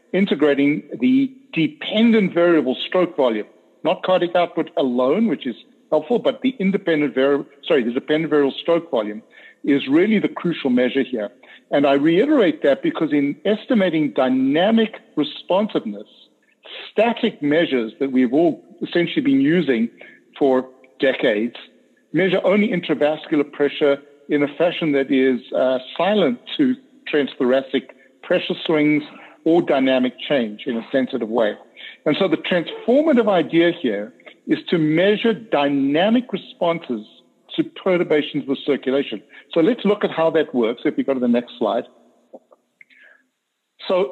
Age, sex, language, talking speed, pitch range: 60-79, male, English, 135 wpm, 135-190 Hz